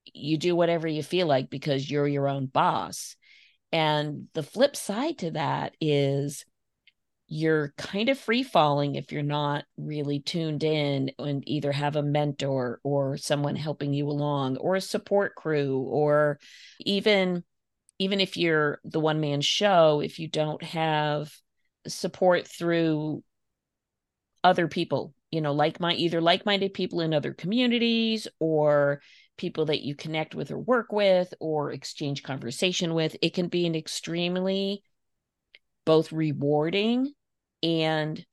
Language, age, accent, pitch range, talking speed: English, 40-59, American, 140-170 Hz, 145 wpm